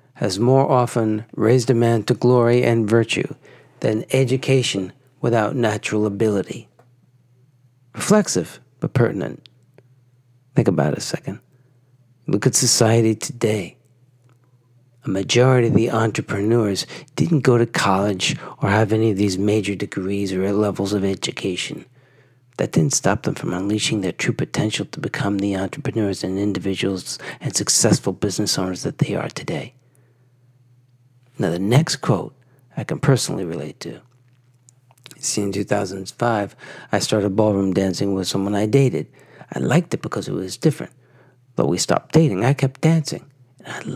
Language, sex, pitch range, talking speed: English, male, 105-130 Hz, 145 wpm